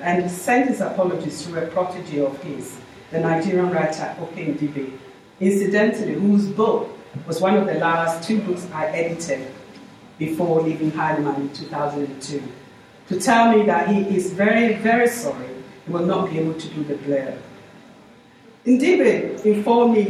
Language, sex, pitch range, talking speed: English, female, 145-190 Hz, 150 wpm